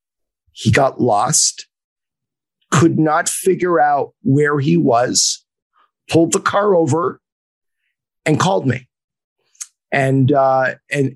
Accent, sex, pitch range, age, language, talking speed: American, male, 135-170 Hz, 50-69, English, 110 wpm